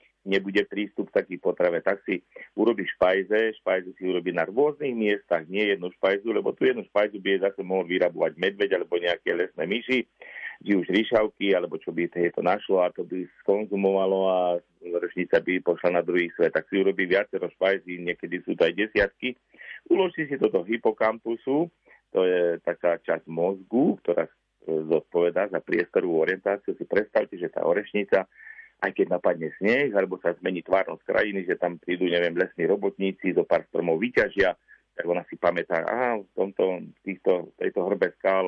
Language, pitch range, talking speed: Slovak, 85-105 Hz, 175 wpm